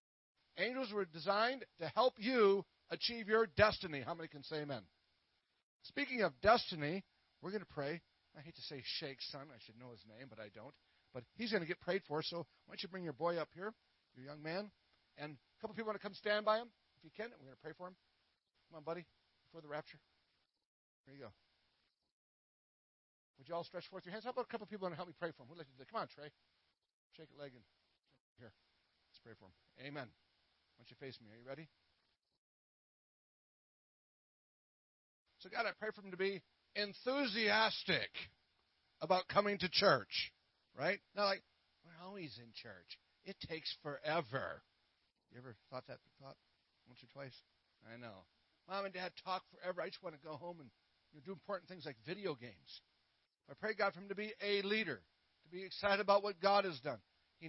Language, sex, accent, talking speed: English, male, American, 205 wpm